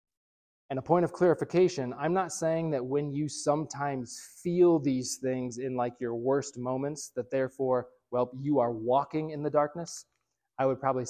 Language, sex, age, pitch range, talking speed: English, male, 20-39, 125-150 Hz, 175 wpm